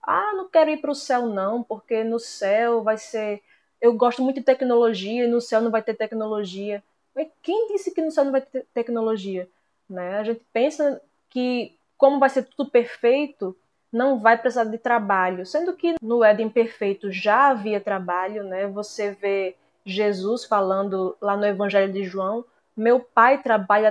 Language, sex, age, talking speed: Portuguese, female, 20-39, 180 wpm